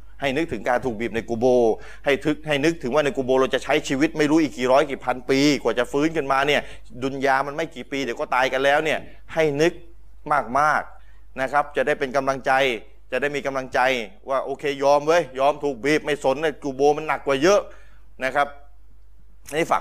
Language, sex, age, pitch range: Thai, male, 20-39, 125-175 Hz